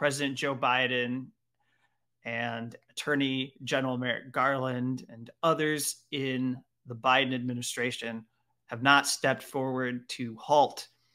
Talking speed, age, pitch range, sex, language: 110 wpm, 30-49, 130-150 Hz, male, English